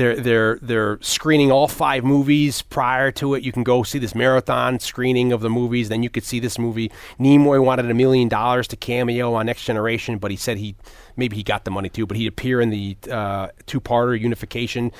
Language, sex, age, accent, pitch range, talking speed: English, male, 30-49, American, 110-130 Hz, 215 wpm